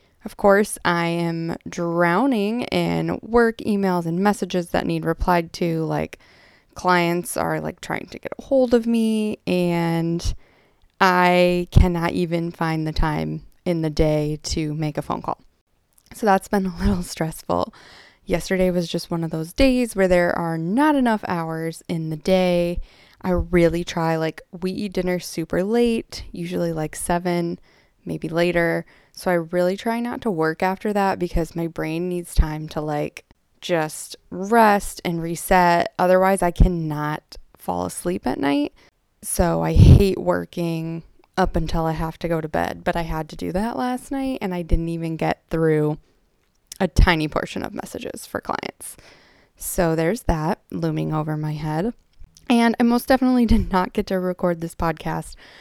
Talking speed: 165 wpm